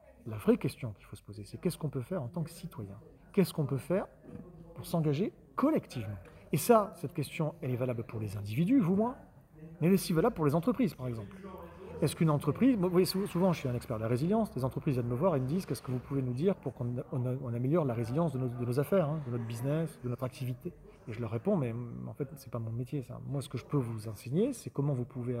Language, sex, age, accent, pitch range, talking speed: French, male, 40-59, French, 125-175 Hz, 270 wpm